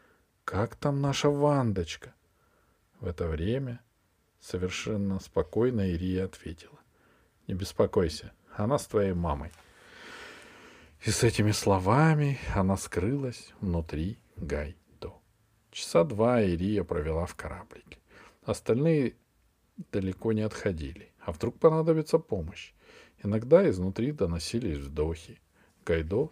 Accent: native